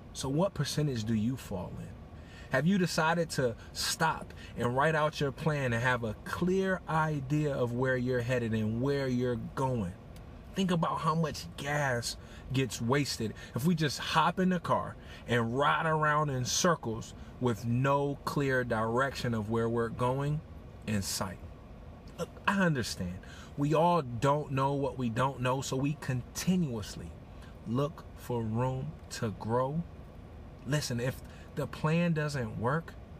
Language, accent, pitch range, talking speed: English, American, 95-145 Hz, 150 wpm